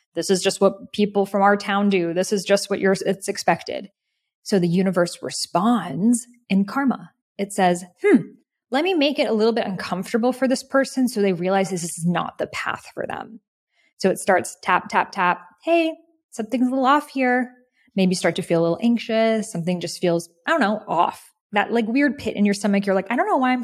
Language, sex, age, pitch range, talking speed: English, female, 20-39, 180-240 Hz, 215 wpm